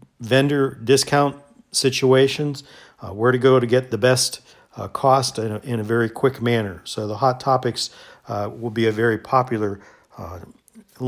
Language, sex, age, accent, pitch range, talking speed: English, male, 50-69, American, 115-130 Hz, 160 wpm